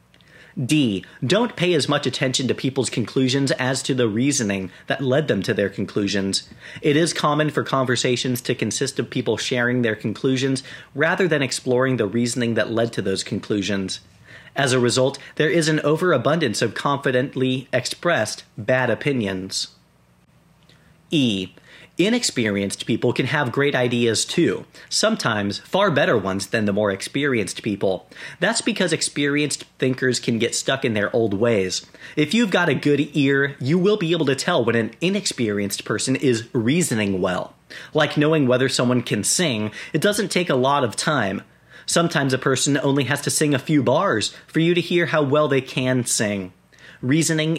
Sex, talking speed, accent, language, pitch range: male, 170 wpm, American, English, 110-150 Hz